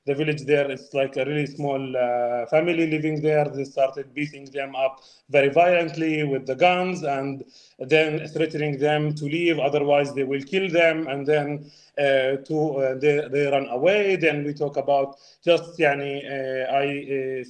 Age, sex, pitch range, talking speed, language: 30-49, male, 140-165 Hz, 180 wpm, English